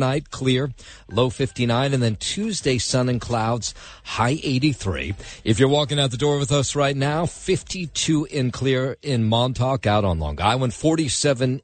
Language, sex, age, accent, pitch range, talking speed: English, male, 50-69, American, 100-135 Hz, 165 wpm